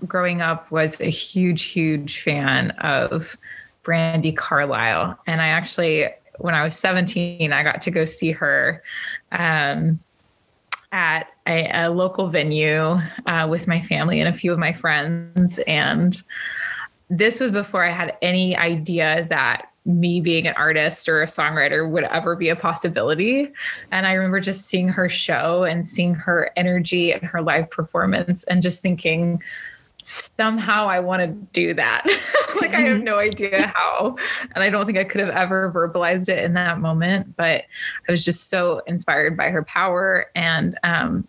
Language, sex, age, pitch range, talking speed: English, female, 20-39, 165-190 Hz, 165 wpm